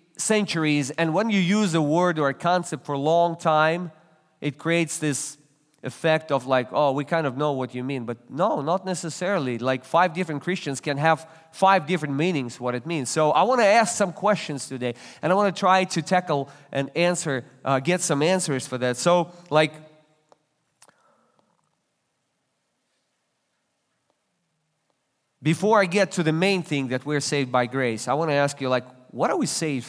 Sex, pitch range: male, 140-180 Hz